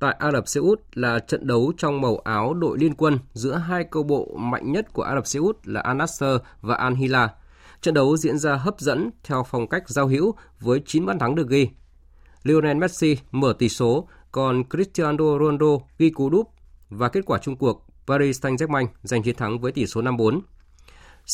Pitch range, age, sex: 115-150 Hz, 20-39, male